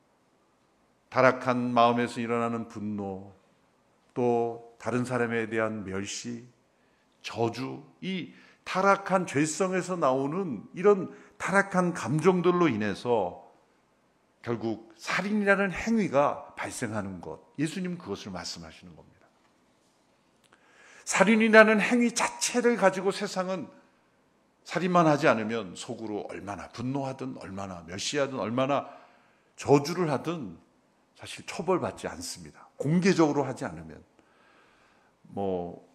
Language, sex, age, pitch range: Korean, male, 50-69, 105-165 Hz